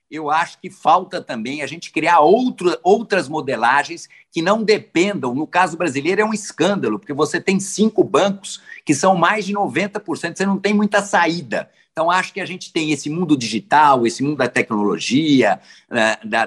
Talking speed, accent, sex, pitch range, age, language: 180 wpm, Brazilian, male, 140-200 Hz, 50-69, Portuguese